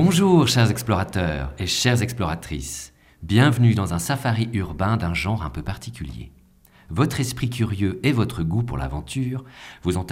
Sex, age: male, 40-59